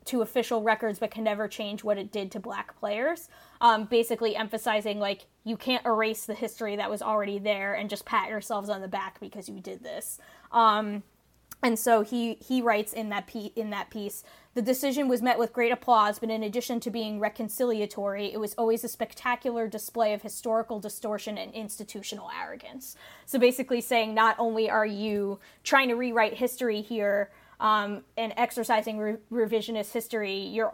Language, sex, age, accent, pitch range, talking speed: English, female, 20-39, American, 215-245 Hz, 180 wpm